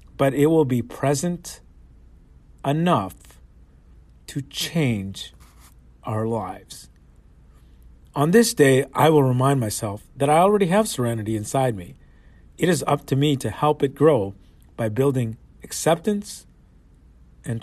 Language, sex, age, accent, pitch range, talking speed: English, male, 40-59, American, 85-135 Hz, 125 wpm